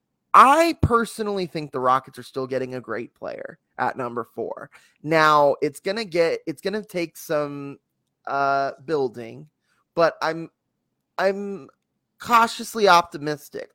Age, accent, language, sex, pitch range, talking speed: 20-39, American, English, male, 135-165 Hz, 135 wpm